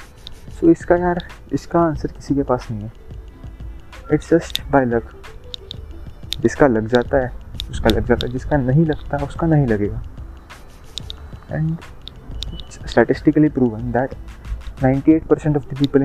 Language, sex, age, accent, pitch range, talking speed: Hindi, male, 20-39, native, 110-145 Hz, 145 wpm